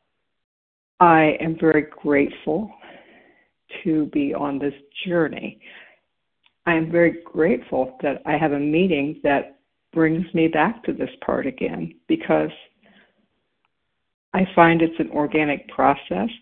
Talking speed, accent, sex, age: 120 wpm, American, female, 60-79